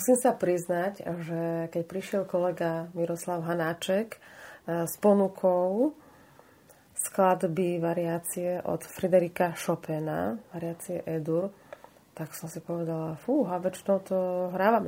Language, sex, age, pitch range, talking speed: Slovak, female, 30-49, 155-190 Hz, 110 wpm